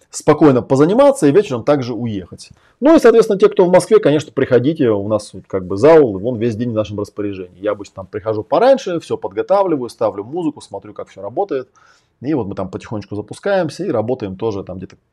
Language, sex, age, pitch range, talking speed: Russian, male, 20-39, 100-140 Hz, 200 wpm